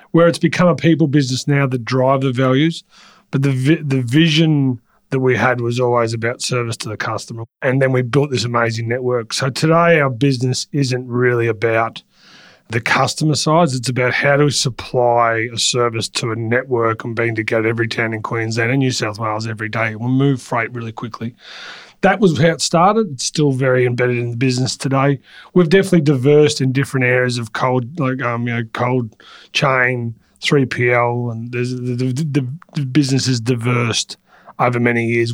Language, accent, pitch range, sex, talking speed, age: English, Australian, 115-140 Hz, male, 190 wpm, 30-49